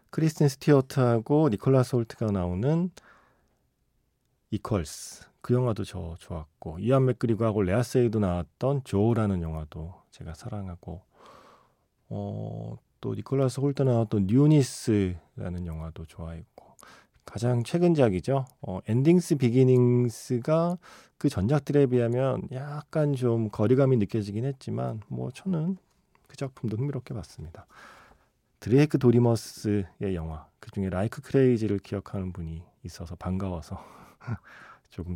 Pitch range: 95-135 Hz